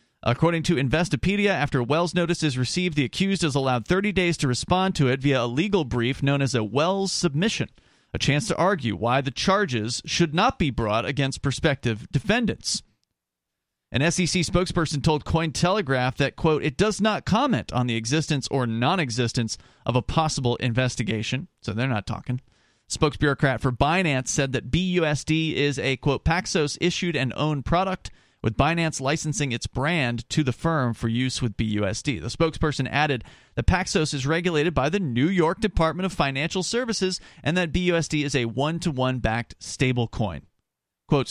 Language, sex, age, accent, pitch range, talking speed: English, male, 40-59, American, 125-170 Hz, 170 wpm